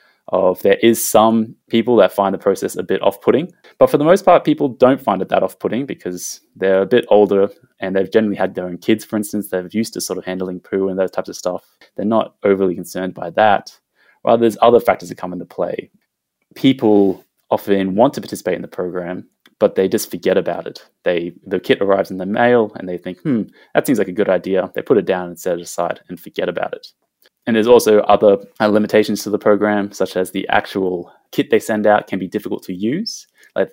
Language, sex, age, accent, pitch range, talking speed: English, male, 20-39, Australian, 90-110 Hz, 230 wpm